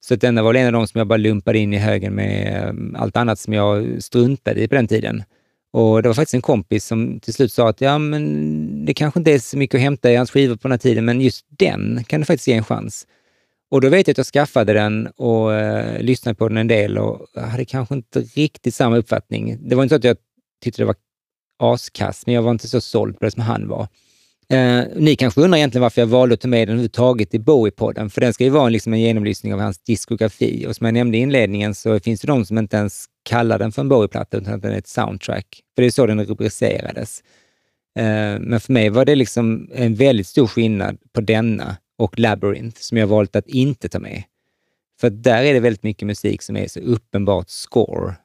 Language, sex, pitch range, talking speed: Swedish, male, 105-125 Hz, 245 wpm